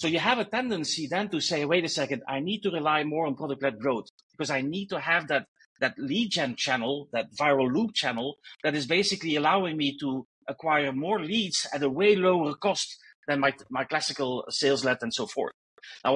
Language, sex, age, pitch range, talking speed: English, male, 40-59, 140-195 Hz, 210 wpm